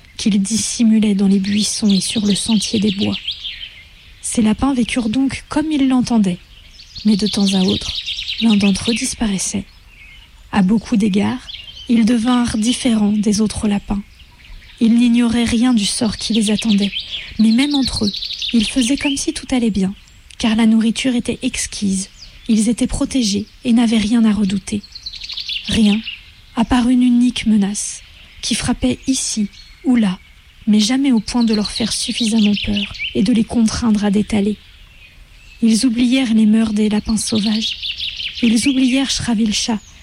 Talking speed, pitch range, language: 155 wpm, 210-245 Hz, French